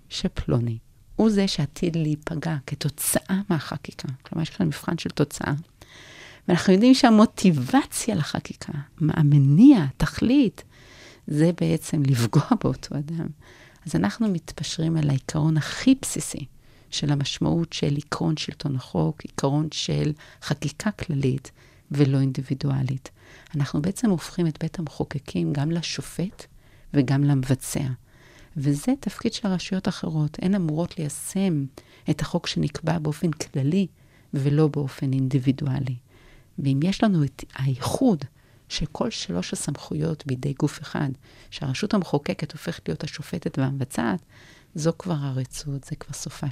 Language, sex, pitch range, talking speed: Hebrew, female, 135-170 Hz, 120 wpm